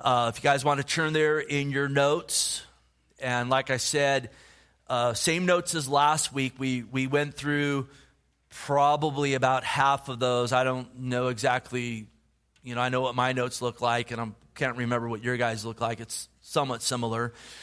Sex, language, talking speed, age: male, English, 185 wpm, 30-49